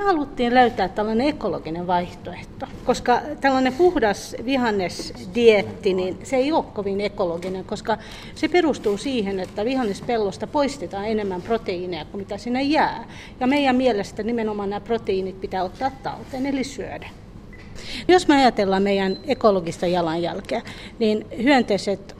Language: Finnish